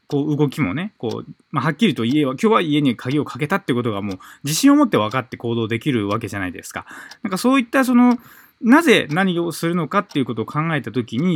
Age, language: 20-39, Japanese